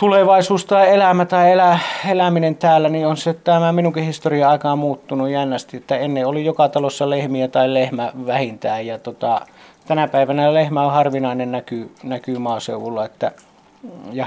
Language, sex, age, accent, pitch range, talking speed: Finnish, male, 30-49, native, 125-155 Hz, 155 wpm